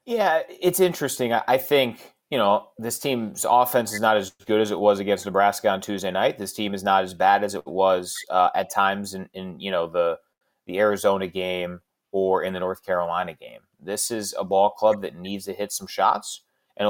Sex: male